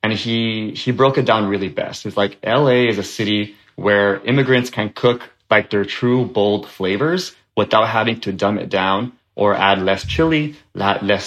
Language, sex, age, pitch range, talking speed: English, male, 20-39, 100-120 Hz, 180 wpm